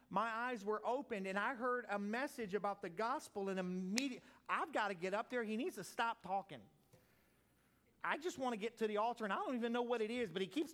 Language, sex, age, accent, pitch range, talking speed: English, male, 40-59, American, 185-240 Hz, 245 wpm